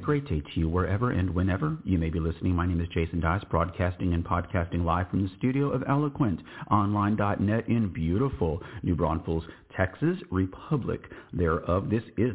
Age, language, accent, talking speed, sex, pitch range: 40-59, English, American, 170 wpm, male, 90-120 Hz